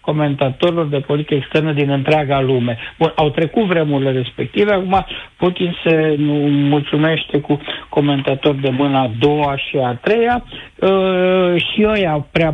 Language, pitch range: Romanian, 145-190 Hz